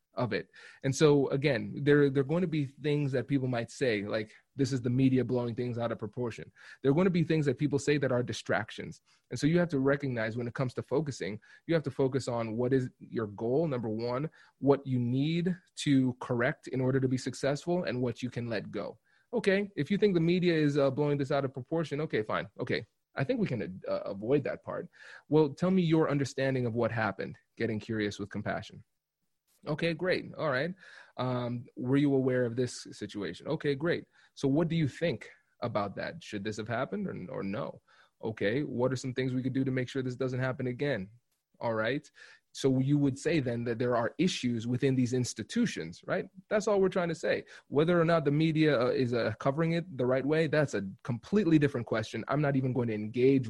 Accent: American